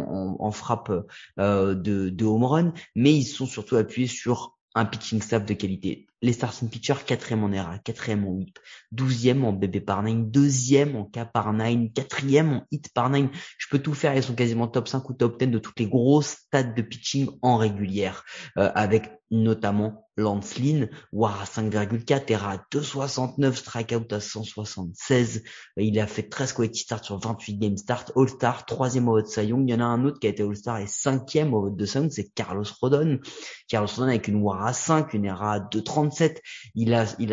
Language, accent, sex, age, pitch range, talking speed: French, French, male, 20-39, 105-135 Hz, 200 wpm